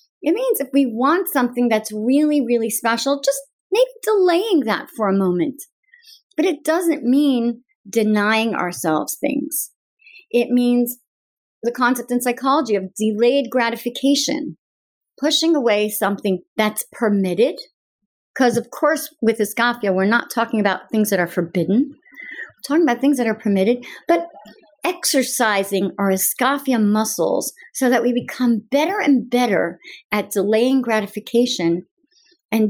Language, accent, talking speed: English, American, 135 wpm